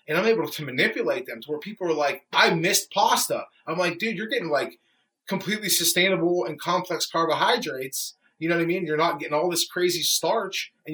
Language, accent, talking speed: English, American, 210 wpm